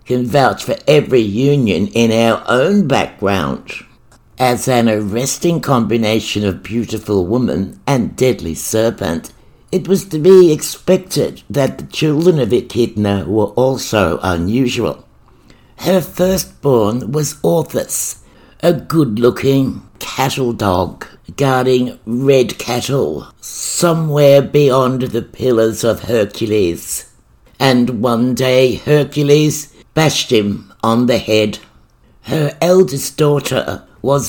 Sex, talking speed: male, 110 wpm